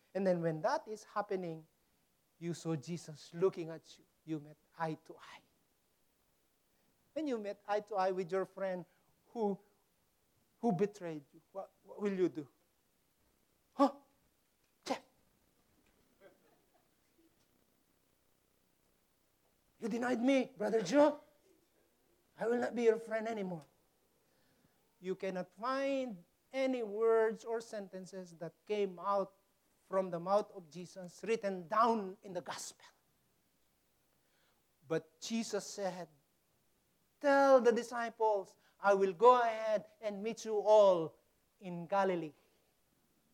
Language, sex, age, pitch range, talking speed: English, male, 50-69, 185-265 Hz, 120 wpm